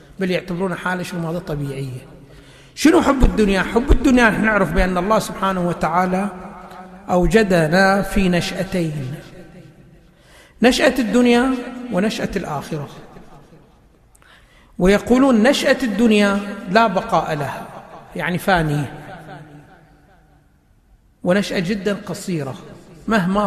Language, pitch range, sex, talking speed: Arabic, 175-240 Hz, male, 90 wpm